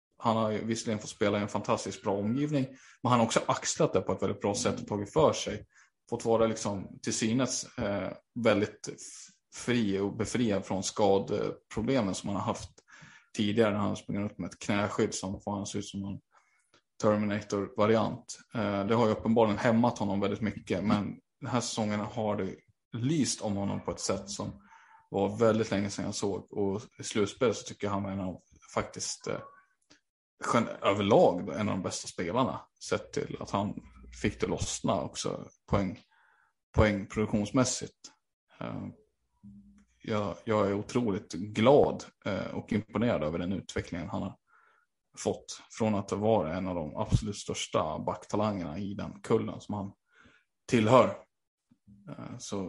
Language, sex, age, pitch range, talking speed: Swedish, male, 20-39, 100-115 Hz, 160 wpm